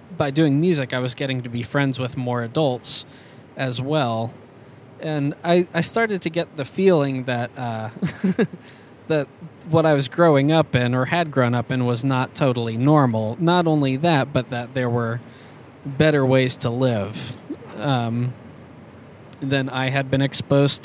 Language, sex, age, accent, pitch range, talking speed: English, male, 20-39, American, 125-155 Hz, 165 wpm